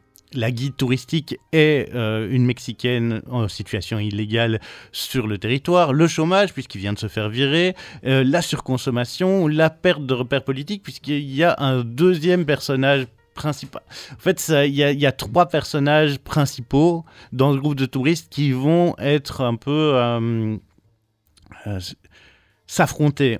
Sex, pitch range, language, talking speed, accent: male, 120-155 Hz, French, 140 wpm, French